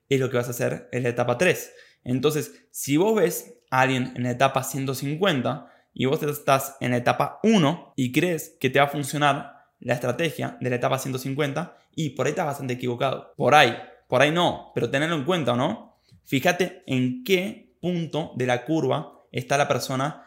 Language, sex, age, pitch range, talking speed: Spanish, male, 20-39, 125-160 Hz, 200 wpm